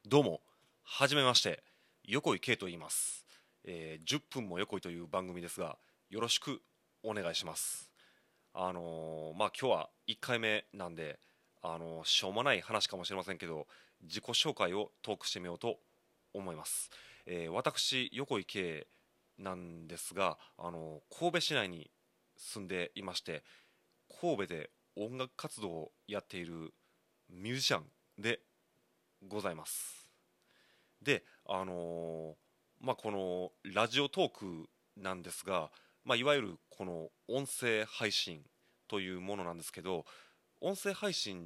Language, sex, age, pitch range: Japanese, male, 30-49, 85-130 Hz